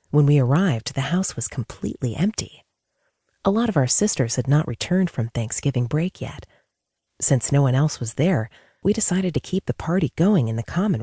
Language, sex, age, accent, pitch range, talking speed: English, female, 40-59, American, 120-170 Hz, 195 wpm